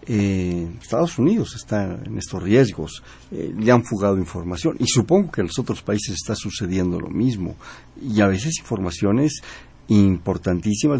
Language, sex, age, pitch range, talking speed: Spanish, male, 60-79, 95-125 Hz, 155 wpm